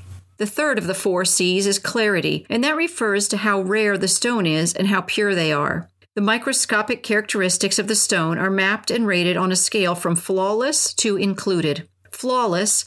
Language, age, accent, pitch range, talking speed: English, 40-59, American, 175-220 Hz, 185 wpm